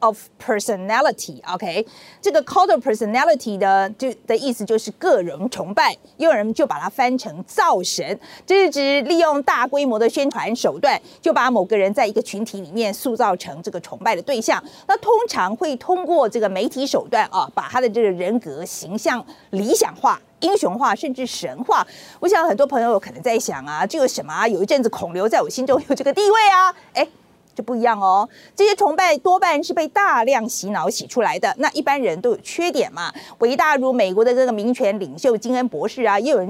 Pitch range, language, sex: 220-335 Hz, Chinese, female